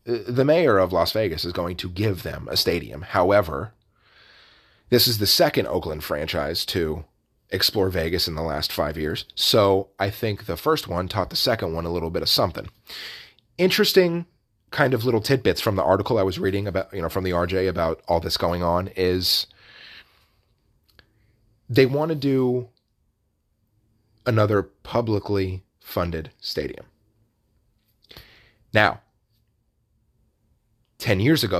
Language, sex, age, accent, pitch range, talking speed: English, male, 30-49, American, 90-110 Hz, 145 wpm